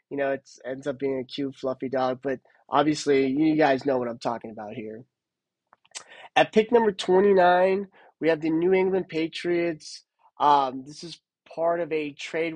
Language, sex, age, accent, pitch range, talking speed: English, male, 20-39, American, 145-180 Hz, 175 wpm